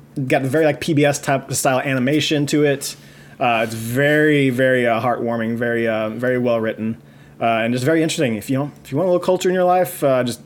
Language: English